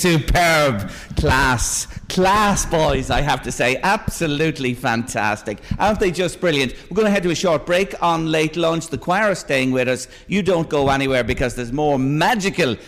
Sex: male